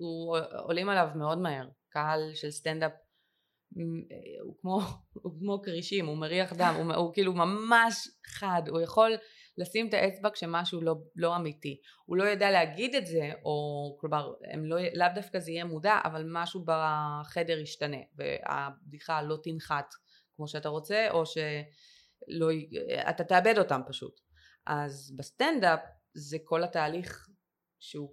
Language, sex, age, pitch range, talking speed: Hebrew, female, 20-39, 150-175 Hz, 135 wpm